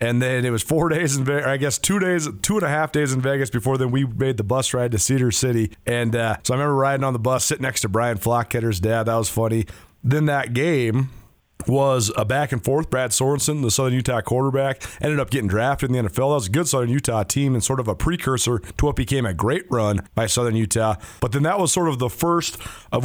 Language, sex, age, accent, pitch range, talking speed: English, male, 30-49, American, 120-150 Hz, 250 wpm